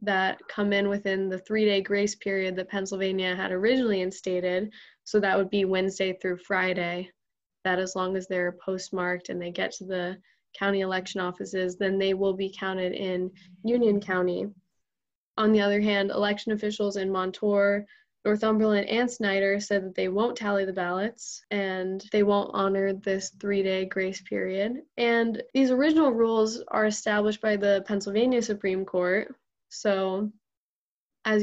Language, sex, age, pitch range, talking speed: English, female, 10-29, 190-210 Hz, 155 wpm